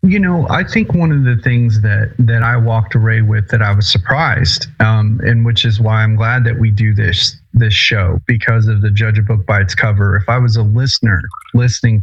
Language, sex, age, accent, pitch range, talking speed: English, male, 30-49, American, 105-125 Hz, 230 wpm